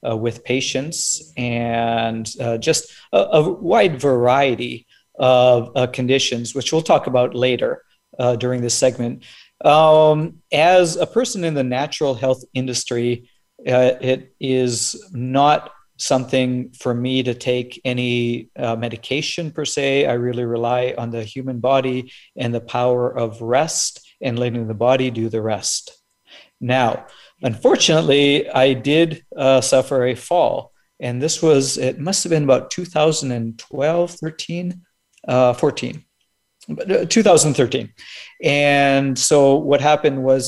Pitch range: 120-145 Hz